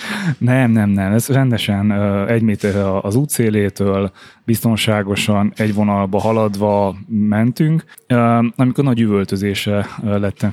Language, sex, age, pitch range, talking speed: Hungarian, male, 20-39, 105-120 Hz, 105 wpm